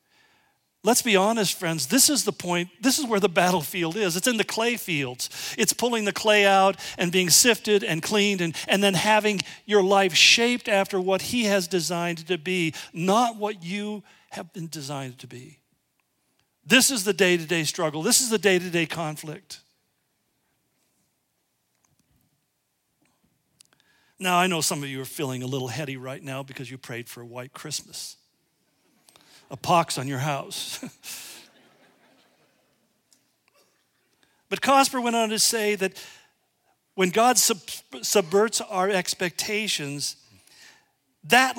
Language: English